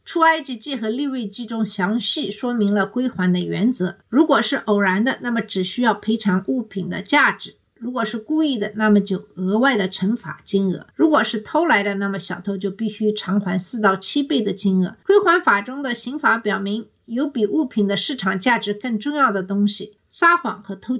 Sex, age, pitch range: female, 50-69, 200-250 Hz